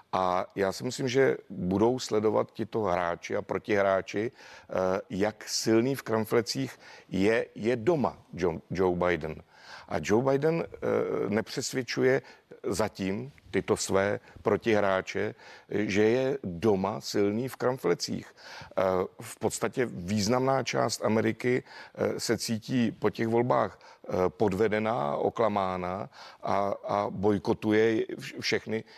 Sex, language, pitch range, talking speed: male, Czech, 100-125 Hz, 105 wpm